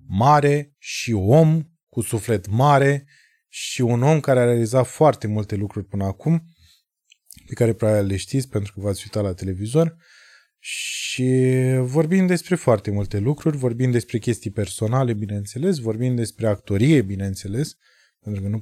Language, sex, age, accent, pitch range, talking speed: Romanian, male, 20-39, native, 110-150 Hz, 150 wpm